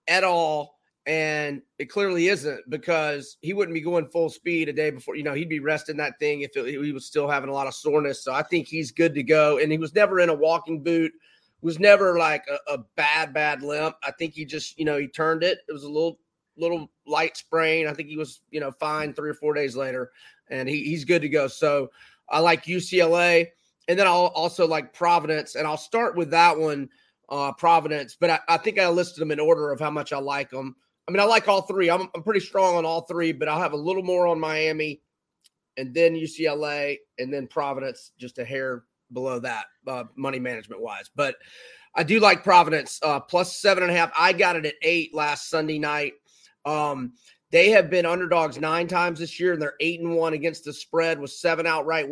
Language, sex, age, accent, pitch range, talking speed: English, male, 30-49, American, 150-170 Hz, 225 wpm